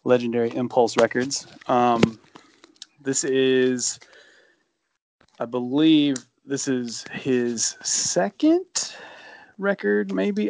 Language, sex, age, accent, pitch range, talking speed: English, male, 20-39, American, 110-125 Hz, 80 wpm